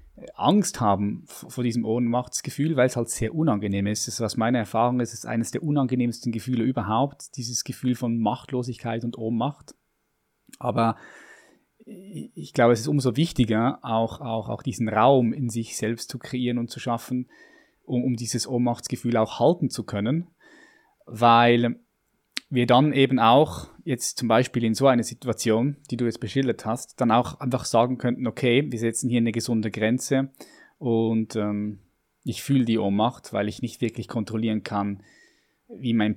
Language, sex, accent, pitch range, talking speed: German, male, German, 110-125 Hz, 165 wpm